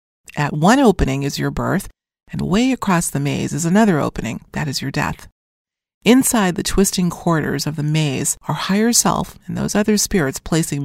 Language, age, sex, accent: English, 30-49, female, American